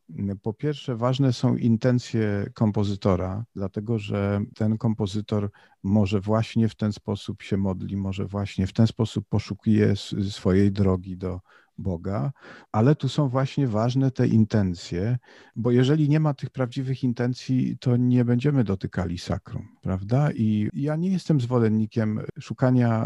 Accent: native